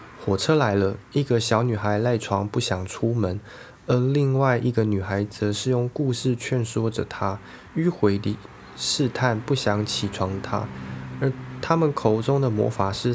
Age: 20-39